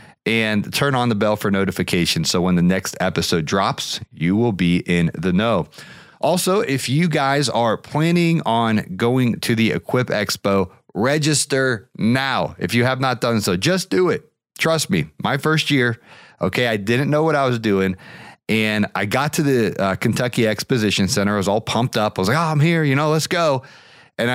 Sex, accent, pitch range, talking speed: male, American, 105-155 Hz, 195 wpm